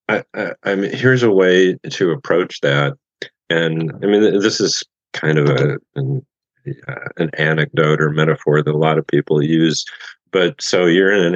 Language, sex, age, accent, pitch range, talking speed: English, male, 40-59, American, 75-85 Hz, 180 wpm